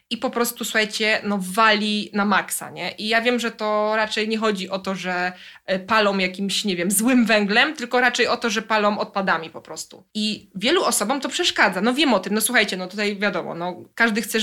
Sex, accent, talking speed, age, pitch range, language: female, native, 215 wpm, 20-39, 200-255 Hz, Polish